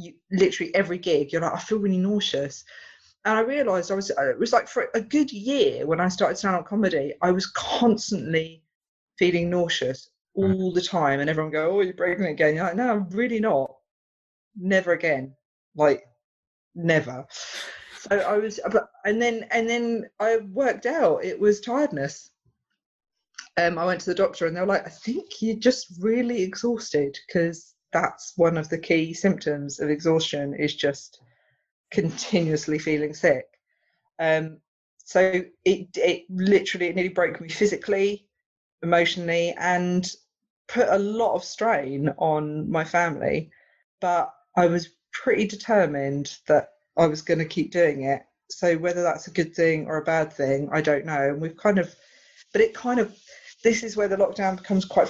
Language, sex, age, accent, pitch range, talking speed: English, female, 40-59, British, 160-205 Hz, 170 wpm